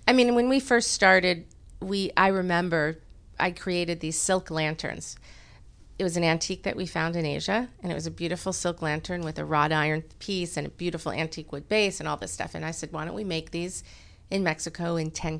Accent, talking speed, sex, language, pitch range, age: American, 220 wpm, female, English, 160-210 Hz, 40-59